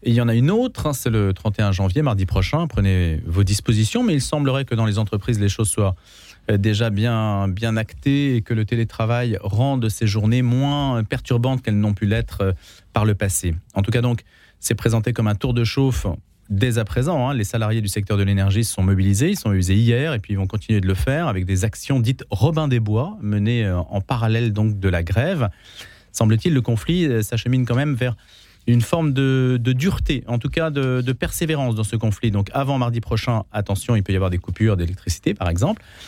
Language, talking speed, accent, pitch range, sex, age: French, 220 wpm, French, 100-130 Hz, male, 40-59